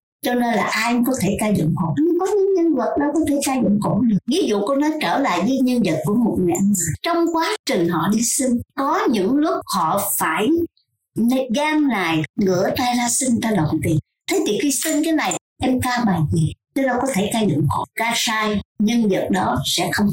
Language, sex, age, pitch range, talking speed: Vietnamese, male, 60-79, 200-310 Hz, 220 wpm